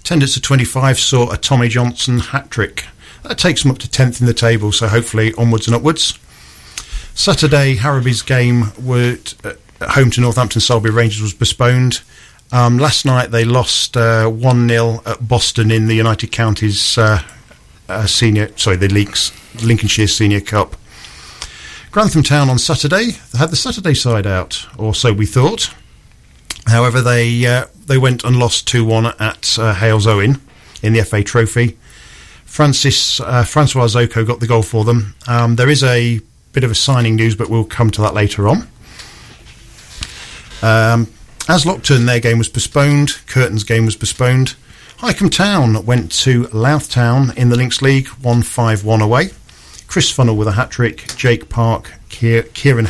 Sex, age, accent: male, 40-59, British